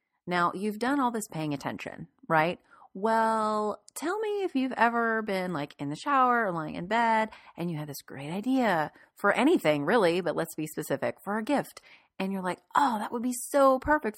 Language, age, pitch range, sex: English, 30-49, 160-230 Hz, female